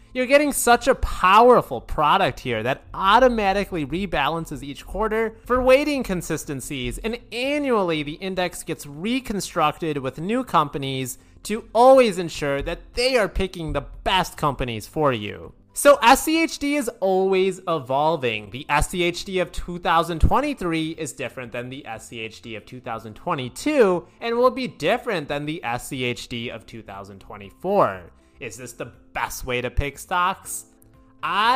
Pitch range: 145-235 Hz